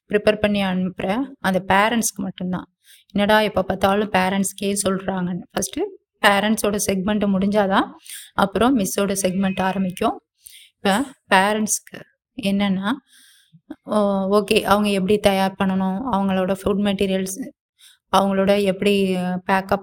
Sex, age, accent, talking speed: female, 20-39, native, 100 wpm